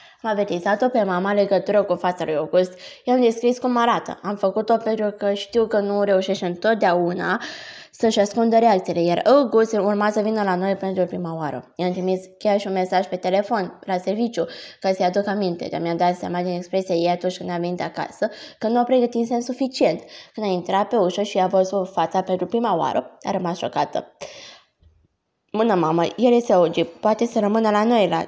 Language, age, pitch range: Romanian, 20-39, 180-220 Hz